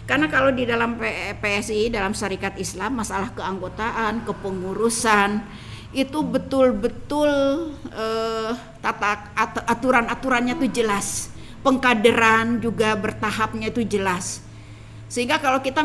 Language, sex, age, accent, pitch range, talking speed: Indonesian, female, 50-69, native, 200-245 Hz, 100 wpm